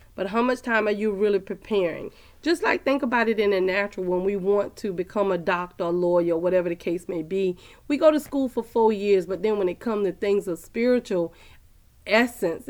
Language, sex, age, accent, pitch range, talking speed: English, female, 40-59, American, 185-225 Hz, 215 wpm